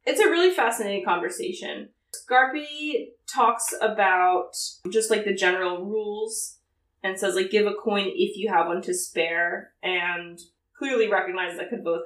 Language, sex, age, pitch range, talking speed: English, female, 20-39, 180-255 Hz, 150 wpm